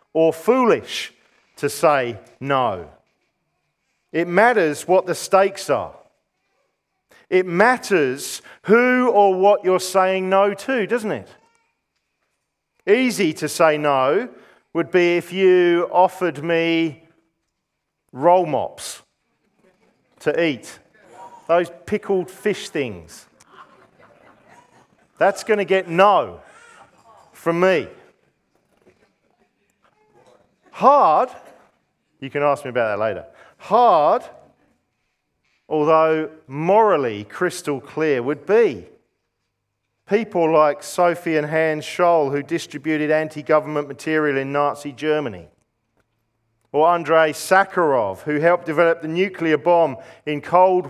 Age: 40-59